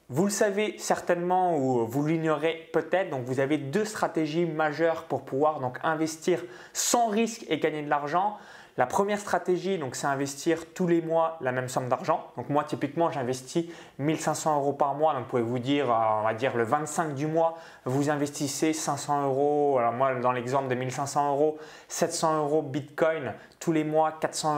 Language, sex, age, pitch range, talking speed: French, male, 20-39, 130-165 Hz, 185 wpm